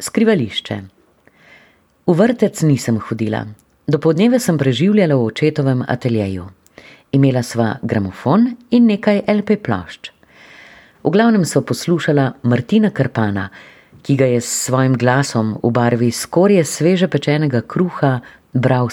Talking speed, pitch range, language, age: 115 wpm, 115-180 Hz, German, 30-49